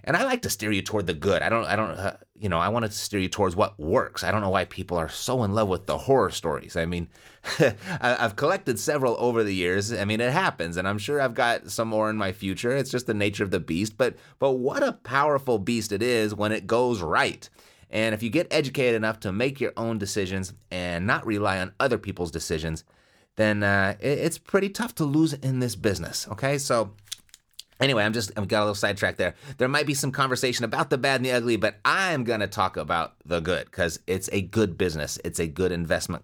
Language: English